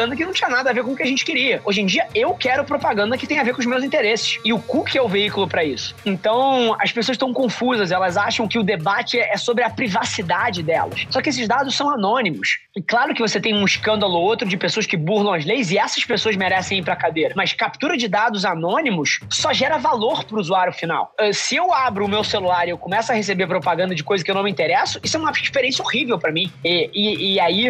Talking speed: 260 wpm